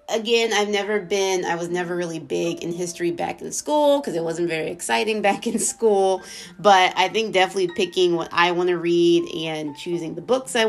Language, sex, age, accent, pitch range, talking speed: English, female, 30-49, American, 170-225 Hz, 210 wpm